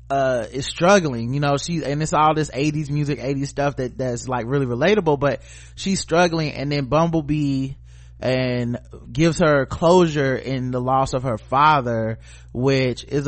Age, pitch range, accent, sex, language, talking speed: 20-39, 120-155 Hz, American, male, English, 165 wpm